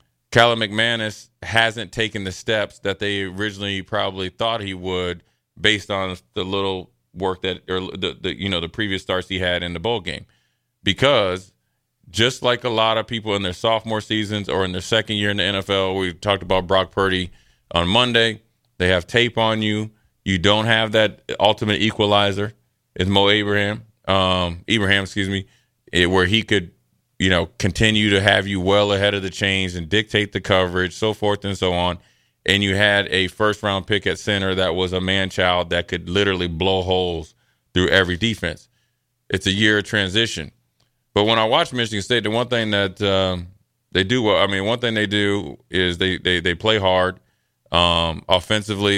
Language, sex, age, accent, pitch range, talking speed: English, male, 30-49, American, 95-105 Hz, 190 wpm